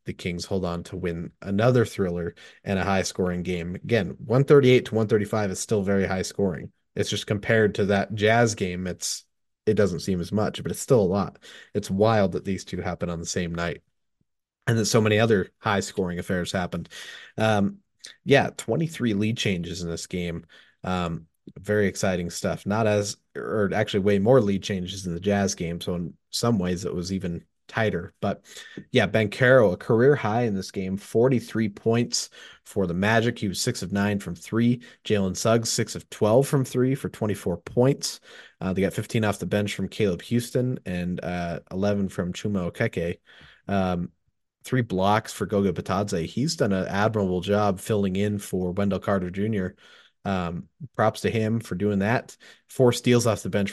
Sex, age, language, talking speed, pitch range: male, 30-49, English, 185 wpm, 90-110 Hz